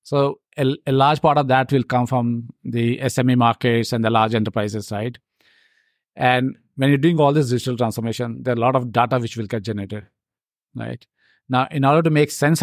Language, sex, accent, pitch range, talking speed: English, male, Indian, 120-140 Hz, 205 wpm